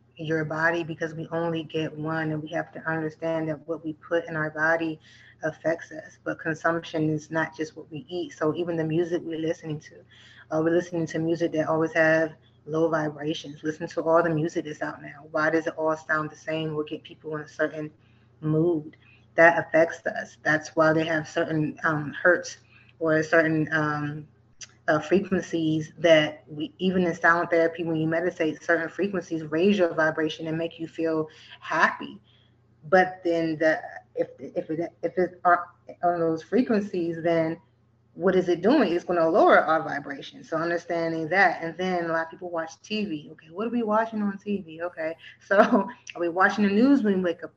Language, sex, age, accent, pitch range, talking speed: English, female, 20-39, American, 155-175 Hz, 195 wpm